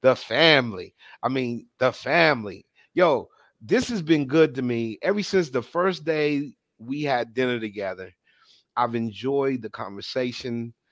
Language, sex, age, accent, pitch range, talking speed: English, male, 30-49, American, 120-150 Hz, 145 wpm